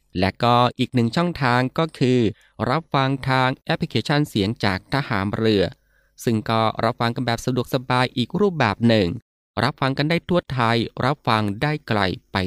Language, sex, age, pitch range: Thai, male, 20-39, 100-135 Hz